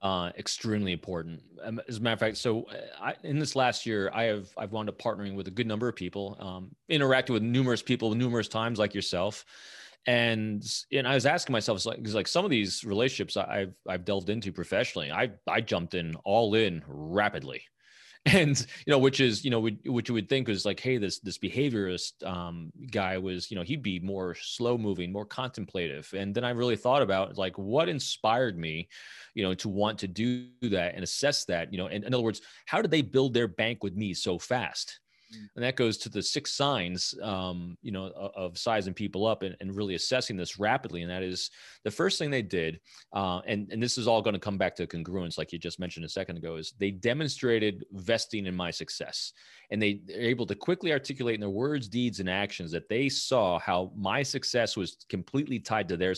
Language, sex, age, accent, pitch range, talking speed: English, male, 30-49, American, 95-120 Hz, 220 wpm